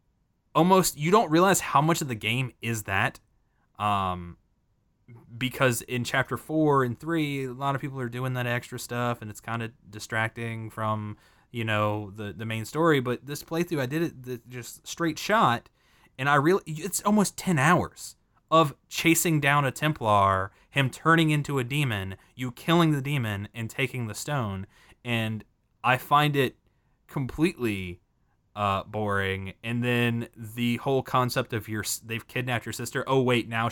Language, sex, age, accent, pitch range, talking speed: English, male, 20-39, American, 105-135 Hz, 165 wpm